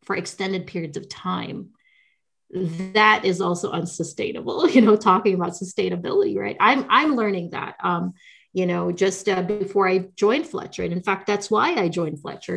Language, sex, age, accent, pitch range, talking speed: English, female, 30-49, American, 180-215 Hz, 170 wpm